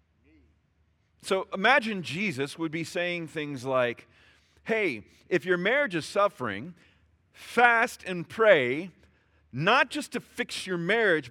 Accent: American